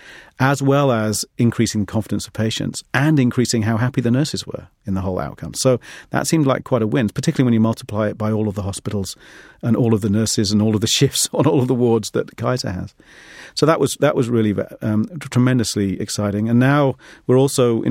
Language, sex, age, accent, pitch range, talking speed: English, male, 40-59, British, 105-130 Hz, 225 wpm